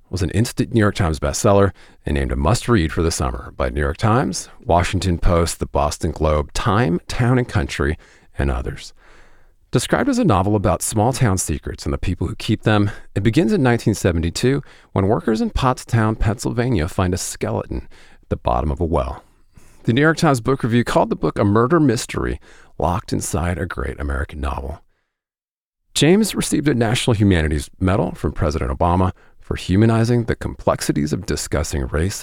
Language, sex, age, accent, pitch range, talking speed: English, male, 40-59, American, 80-110 Hz, 180 wpm